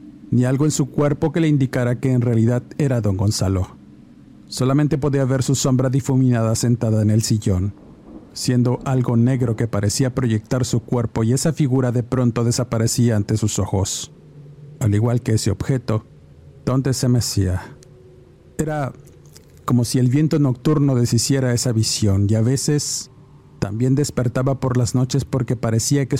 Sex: male